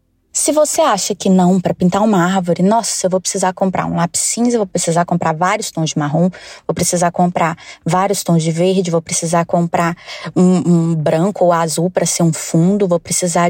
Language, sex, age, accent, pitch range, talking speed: Portuguese, female, 20-39, Brazilian, 170-235 Hz, 200 wpm